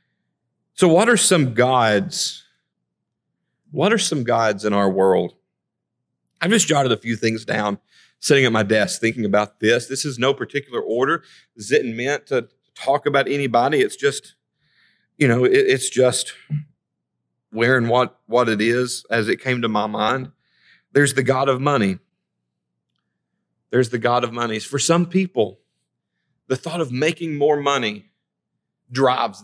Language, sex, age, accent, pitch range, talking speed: English, male, 40-59, American, 120-165 Hz, 155 wpm